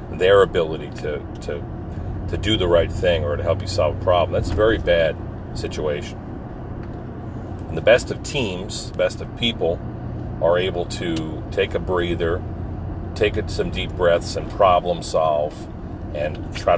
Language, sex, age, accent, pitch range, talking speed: English, male, 40-59, American, 85-105 Hz, 160 wpm